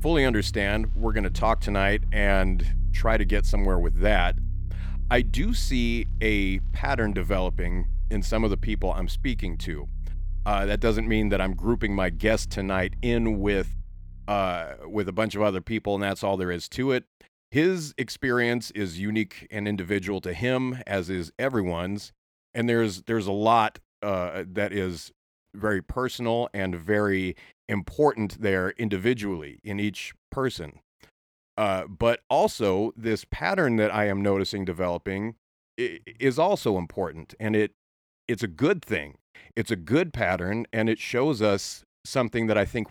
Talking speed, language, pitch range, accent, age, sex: 160 wpm, English, 95-110 Hz, American, 40-59, male